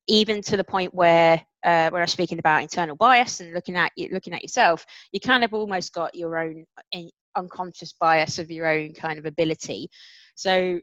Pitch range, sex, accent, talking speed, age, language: 160-190 Hz, female, British, 195 wpm, 20-39, English